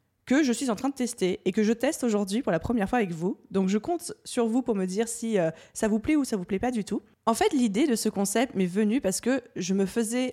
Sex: female